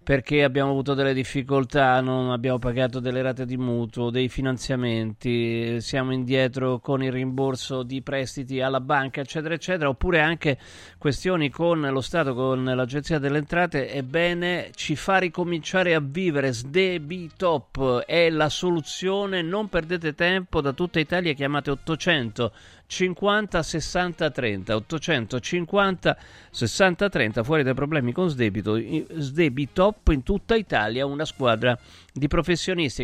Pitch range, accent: 125-165 Hz, native